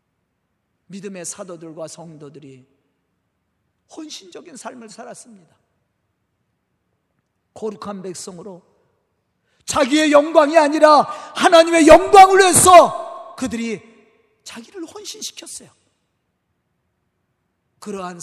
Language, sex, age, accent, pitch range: Korean, male, 40-59, native, 205-265 Hz